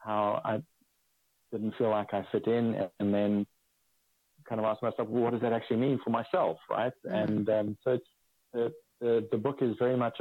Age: 40-59